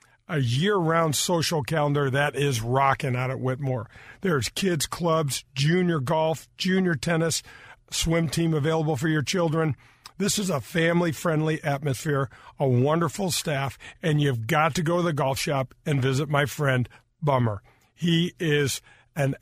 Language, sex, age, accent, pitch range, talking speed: English, male, 50-69, American, 135-165 Hz, 150 wpm